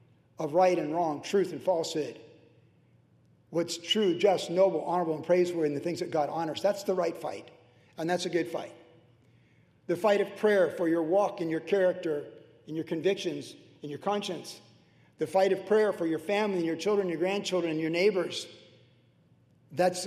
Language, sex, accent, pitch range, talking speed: English, male, American, 145-180 Hz, 180 wpm